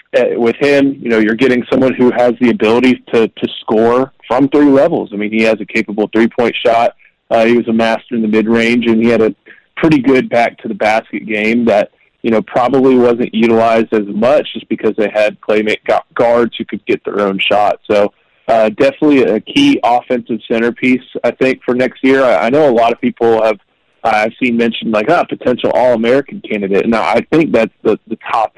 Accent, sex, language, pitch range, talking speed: American, male, English, 110-125 Hz, 210 wpm